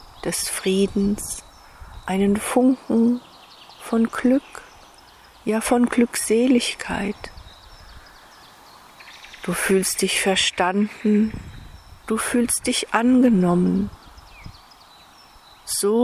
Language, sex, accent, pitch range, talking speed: German, female, German, 195-235 Hz, 65 wpm